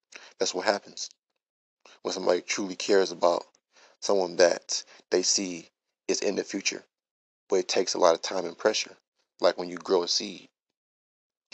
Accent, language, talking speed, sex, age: American, English, 160 wpm, male, 20-39